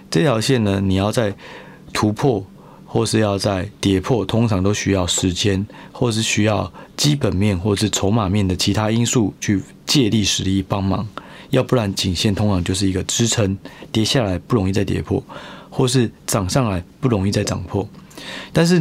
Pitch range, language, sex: 100-125 Hz, Chinese, male